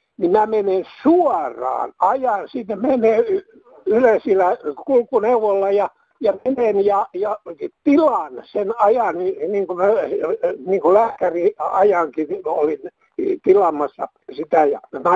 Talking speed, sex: 125 wpm, male